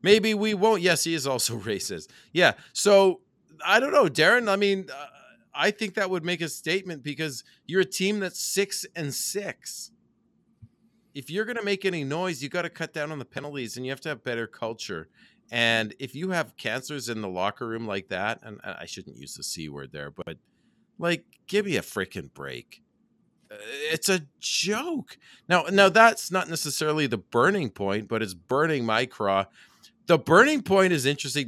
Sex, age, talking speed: male, 40-59, 195 wpm